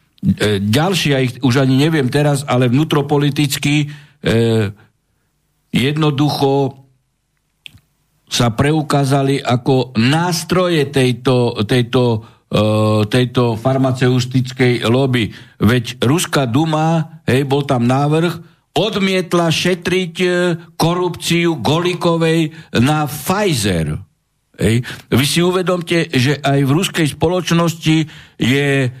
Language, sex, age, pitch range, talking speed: Slovak, male, 60-79, 125-165 Hz, 85 wpm